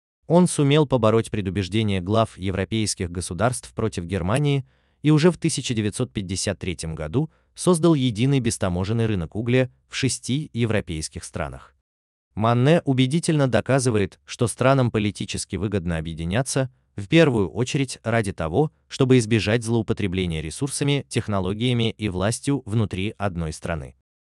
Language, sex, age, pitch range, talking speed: Russian, male, 30-49, 90-130 Hz, 115 wpm